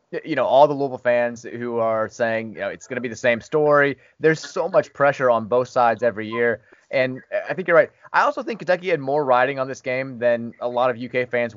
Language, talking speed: English, 250 wpm